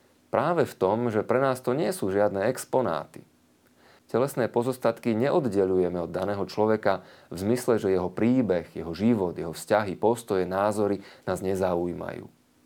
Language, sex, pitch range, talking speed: Slovak, male, 90-125 Hz, 140 wpm